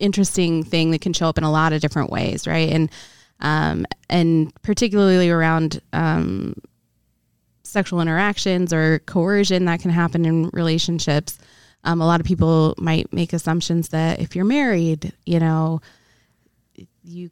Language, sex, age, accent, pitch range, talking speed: English, female, 20-39, American, 160-180 Hz, 150 wpm